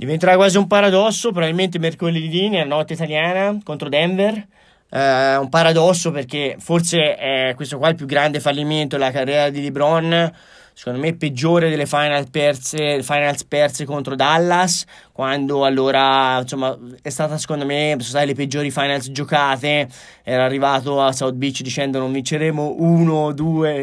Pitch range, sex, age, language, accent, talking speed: 145-175 Hz, male, 20-39, Italian, native, 150 wpm